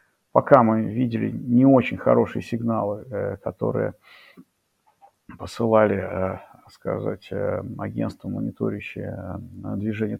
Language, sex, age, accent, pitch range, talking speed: Russian, male, 50-69, native, 105-140 Hz, 75 wpm